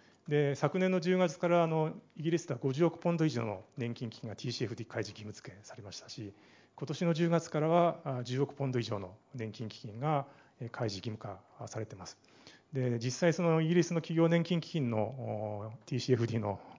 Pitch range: 120-160 Hz